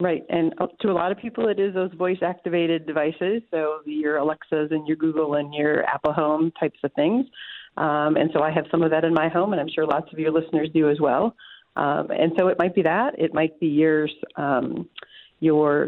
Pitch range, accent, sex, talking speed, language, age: 155-190 Hz, American, female, 220 wpm, English, 40-59